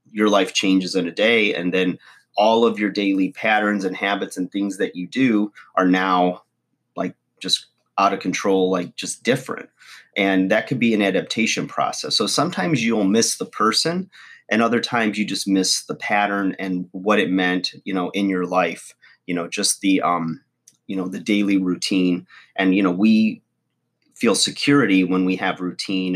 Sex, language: male, English